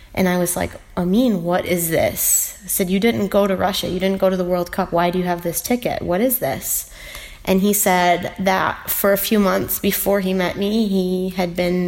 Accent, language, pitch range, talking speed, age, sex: American, English, 180-200 Hz, 230 wpm, 20-39, female